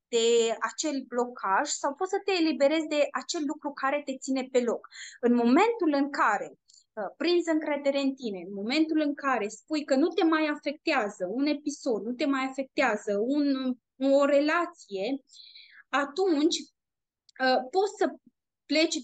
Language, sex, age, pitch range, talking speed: Romanian, female, 20-39, 245-315 Hz, 145 wpm